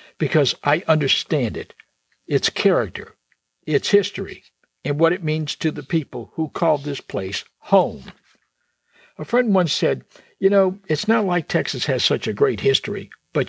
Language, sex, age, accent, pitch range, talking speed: English, male, 60-79, American, 125-165 Hz, 160 wpm